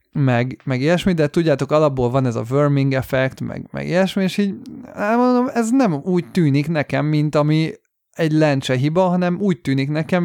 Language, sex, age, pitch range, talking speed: Hungarian, male, 30-49, 130-165 Hz, 180 wpm